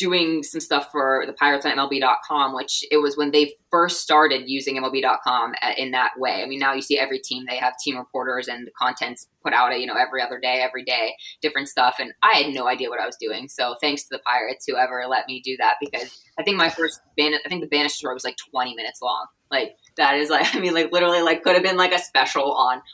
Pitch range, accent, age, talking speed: 130-155 Hz, American, 20-39, 250 wpm